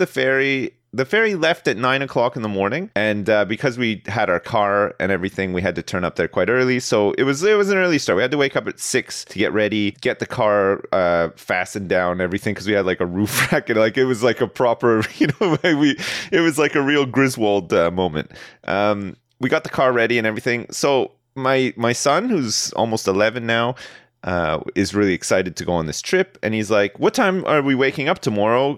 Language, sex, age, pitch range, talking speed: English, male, 30-49, 100-155 Hz, 240 wpm